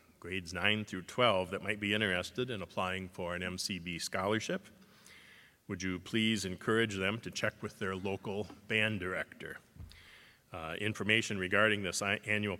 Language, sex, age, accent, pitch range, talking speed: English, male, 40-59, American, 95-120 Hz, 150 wpm